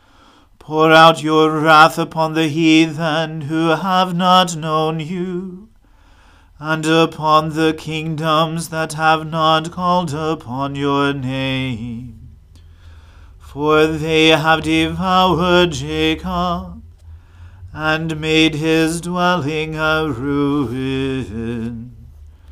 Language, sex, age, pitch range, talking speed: English, male, 40-59, 130-160 Hz, 90 wpm